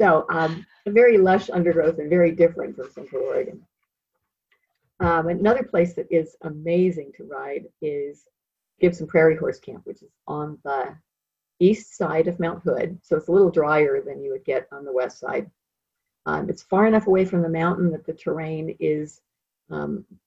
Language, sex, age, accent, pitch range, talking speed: English, female, 50-69, American, 155-210 Hz, 180 wpm